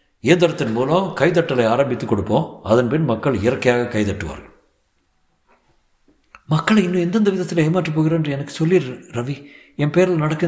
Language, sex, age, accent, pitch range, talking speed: Tamil, male, 60-79, native, 115-175 Hz, 125 wpm